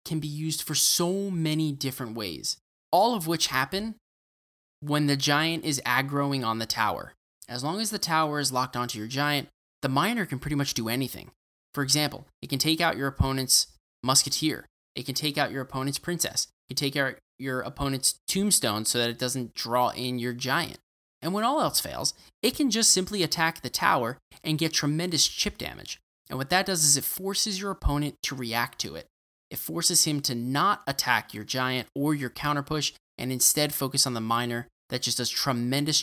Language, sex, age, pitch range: English, male, 20-39, 125-155 Hz